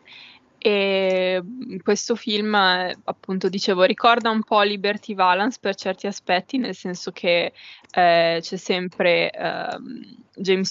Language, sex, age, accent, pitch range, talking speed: Italian, female, 10-29, native, 185-215 Hz, 120 wpm